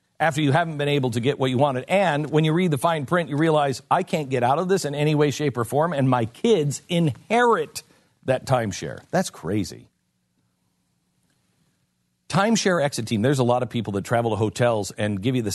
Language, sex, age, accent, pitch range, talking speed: English, male, 50-69, American, 105-145 Hz, 210 wpm